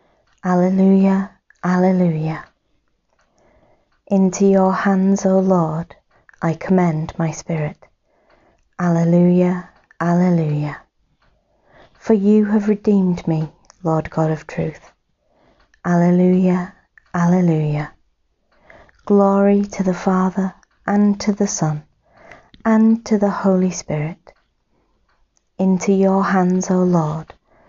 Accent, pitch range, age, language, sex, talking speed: British, 165-195 Hz, 30-49, English, female, 90 wpm